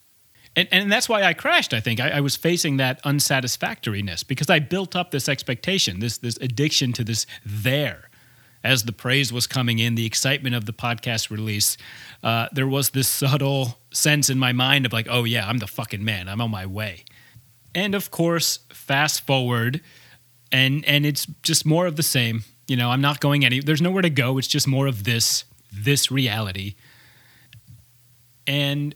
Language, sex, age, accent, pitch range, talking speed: English, male, 30-49, American, 115-140 Hz, 185 wpm